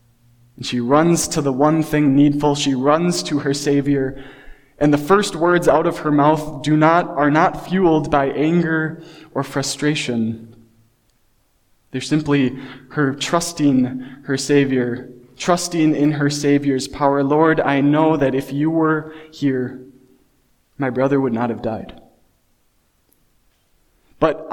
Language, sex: English, male